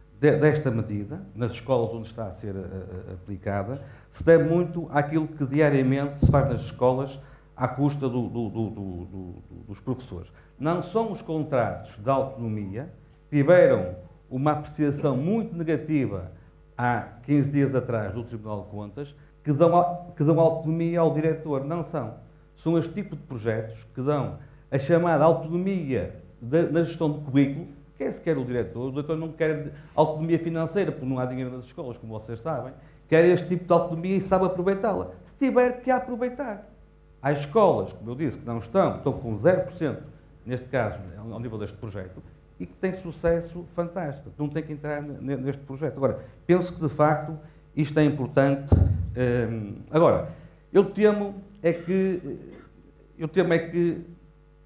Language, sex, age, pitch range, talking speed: Portuguese, male, 50-69, 120-165 Hz, 165 wpm